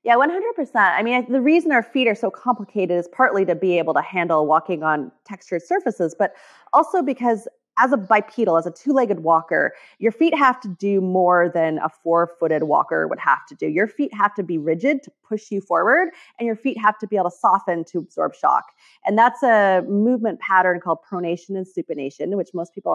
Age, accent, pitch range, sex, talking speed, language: 30-49, American, 175-235 Hz, female, 210 wpm, English